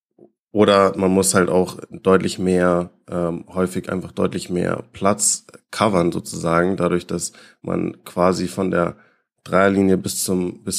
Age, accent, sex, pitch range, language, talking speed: 20-39, German, male, 90-100 Hz, German, 140 wpm